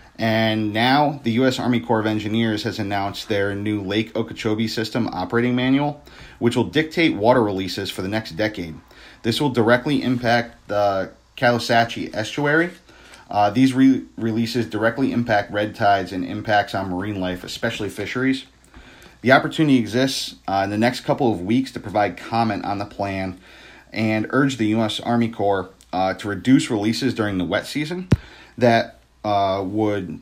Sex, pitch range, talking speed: male, 100-120 Hz, 160 wpm